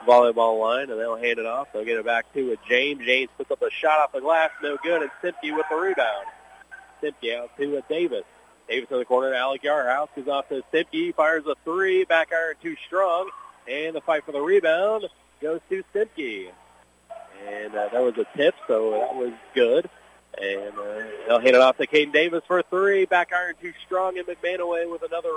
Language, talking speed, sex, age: English, 215 wpm, male, 30-49